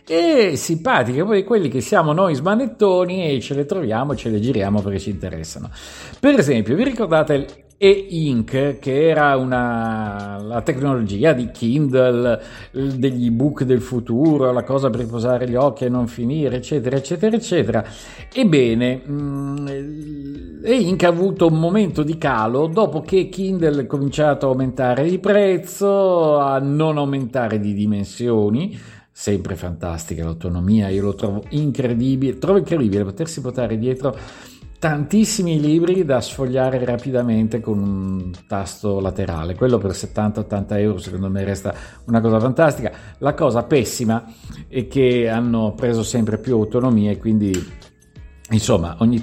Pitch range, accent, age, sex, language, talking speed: 110-150 Hz, native, 50-69, male, Italian, 135 wpm